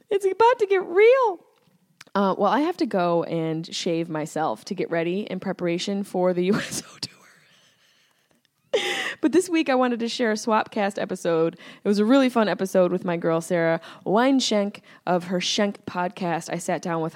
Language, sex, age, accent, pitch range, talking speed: English, female, 20-39, American, 165-220 Hz, 185 wpm